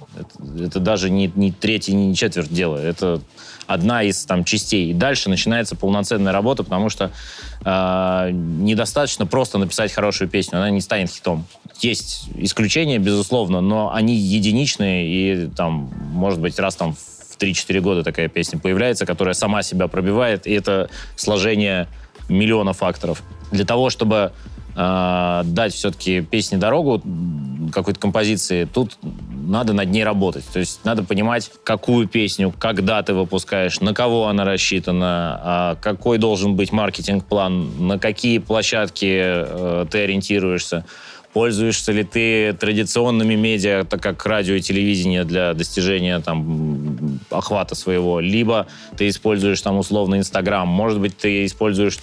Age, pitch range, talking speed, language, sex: 20-39, 90-105 Hz, 135 wpm, Russian, male